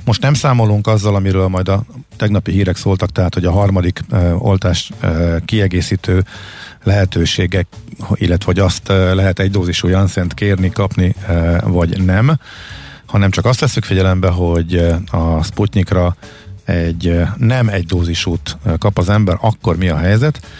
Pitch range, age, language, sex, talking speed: 90-110 Hz, 50-69, Hungarian, male, 135 wpm